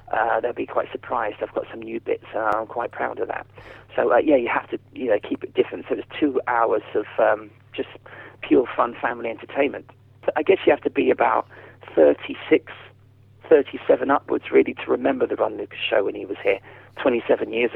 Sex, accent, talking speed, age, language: male, British, 215 wpm, 30-49, English